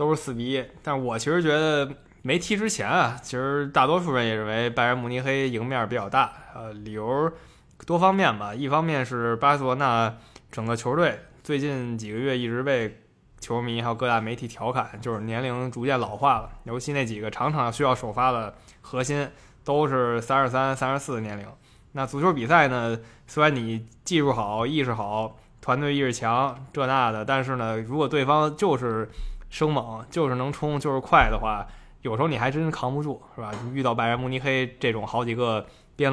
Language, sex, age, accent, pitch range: Chinese, male, 20-39, native, 115-140 Hz